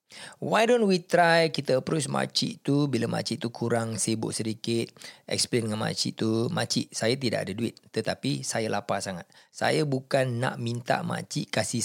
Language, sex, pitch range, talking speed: Malay, male, 115-165 Hz, 165 wpm